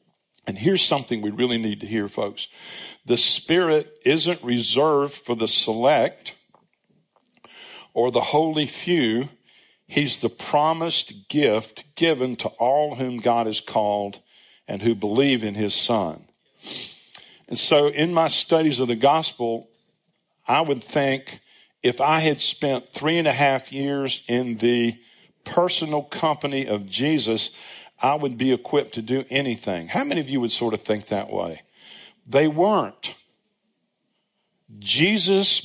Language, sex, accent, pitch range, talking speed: English, male, American, 120-165 Hz, 140 wpm